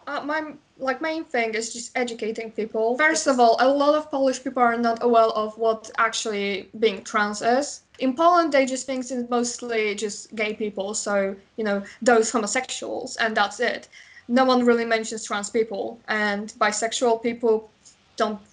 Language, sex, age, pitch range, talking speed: English, female, 10-29, 210-250 Hz, 175 wpm